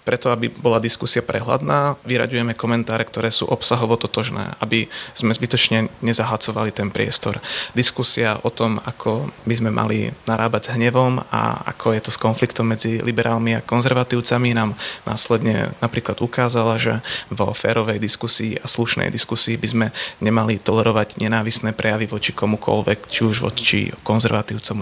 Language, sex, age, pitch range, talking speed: Slovak, male, 30-49, 110-120 Hz, 145 wpm